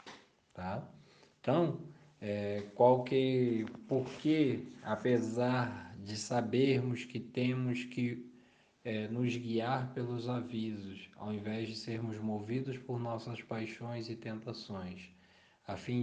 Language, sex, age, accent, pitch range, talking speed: Portuguese, male, 20-39, Brazilian, 105-125 Hz, 95 wpm